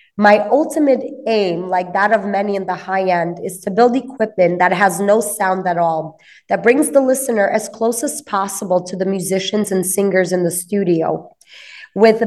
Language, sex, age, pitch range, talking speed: English, female, 20-39, 180-220 Hz, 185 wpm